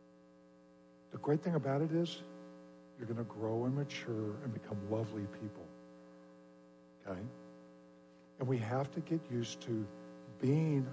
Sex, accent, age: male, American, 60-79